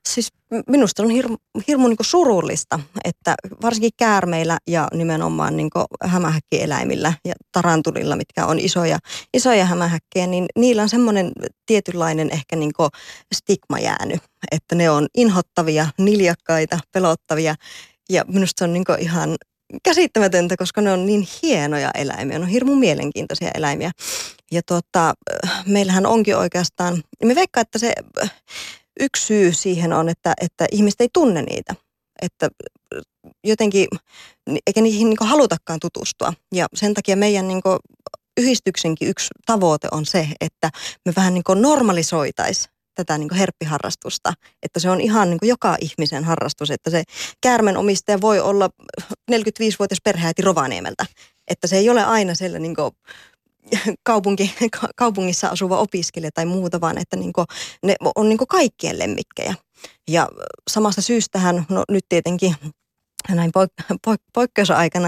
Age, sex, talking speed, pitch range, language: 20-39, female, 130 wpm, 165-215 Hz, Finnish